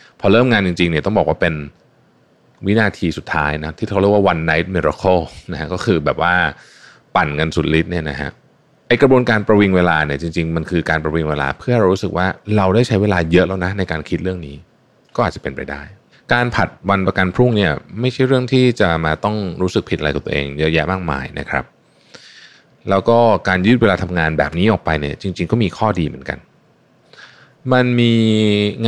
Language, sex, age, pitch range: Thai, male, 20-39, 80-110 Hz